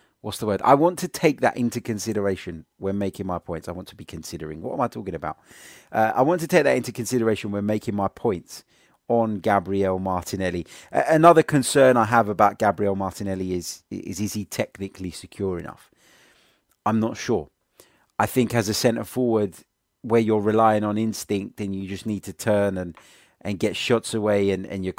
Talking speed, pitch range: 195 wpm, 100-115 Hz